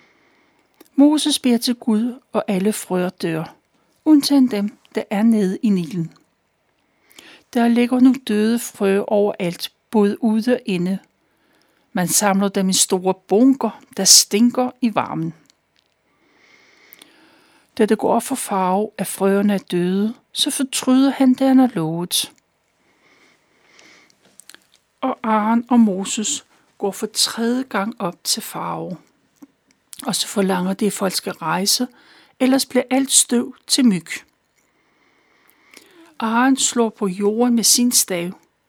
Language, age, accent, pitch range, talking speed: Danish, 60-79, native, 195-255 Hz, 130 wpm